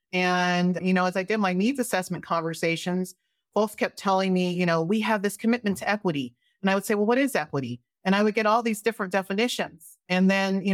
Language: English